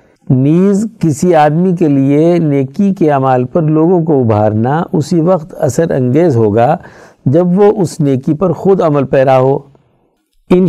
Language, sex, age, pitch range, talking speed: Urdu, male, 60-79, 120-165 Hz, 150 wpm